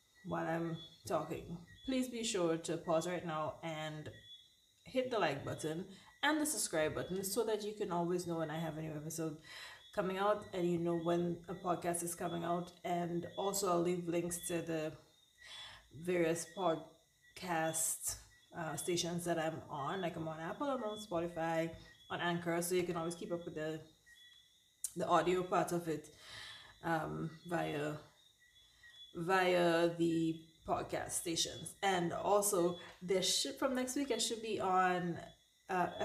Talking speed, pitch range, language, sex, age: 160 wpm, 165-195 Hz, English, female, 20-39